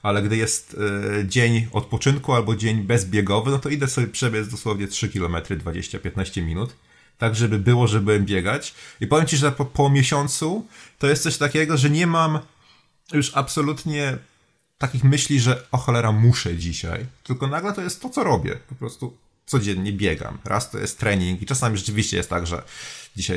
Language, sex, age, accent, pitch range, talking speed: Polish, male, 30-49, native, 105-140 Hz, 180 wpm